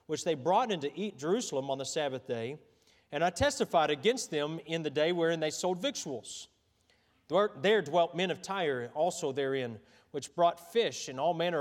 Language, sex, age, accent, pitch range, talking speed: English, male, 40-59, American, 145-205 Hz, 185 wpm